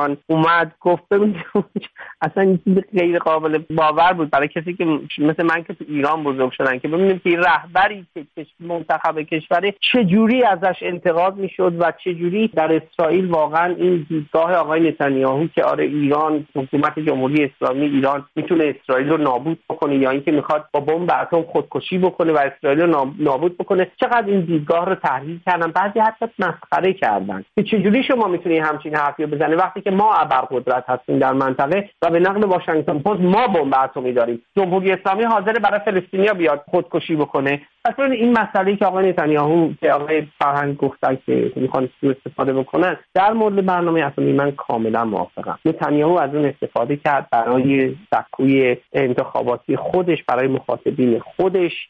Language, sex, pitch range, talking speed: English, male, 140-185 Hz, 165 wpm